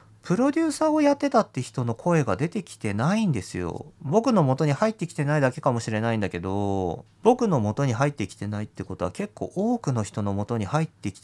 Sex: male